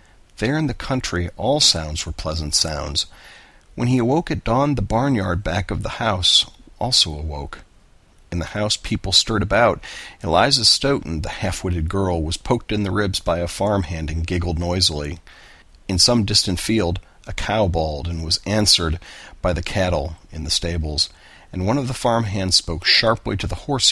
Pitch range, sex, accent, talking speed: 80-100 Hz, male, American, 175 wpm